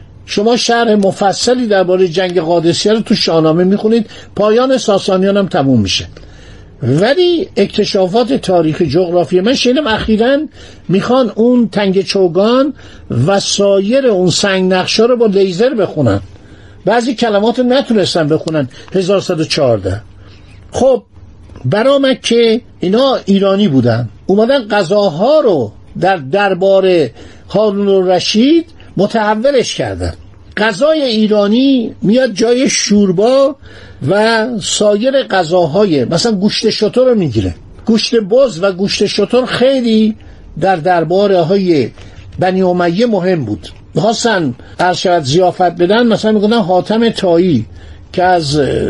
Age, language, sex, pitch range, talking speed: 50-69, Persian, male, 170-230 Hz, 110 wpm